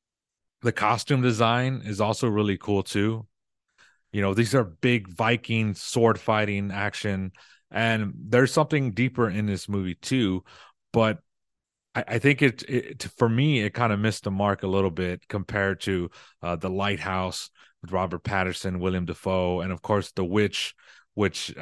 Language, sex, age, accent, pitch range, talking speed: English, male, 30-49, American, 95-115 Hz, 160 wpm